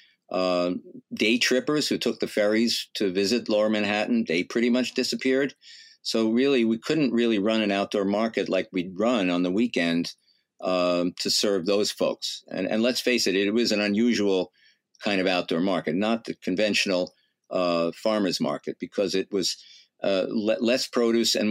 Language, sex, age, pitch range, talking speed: English, male, 50-69, 90-115 Hz, 175 wpm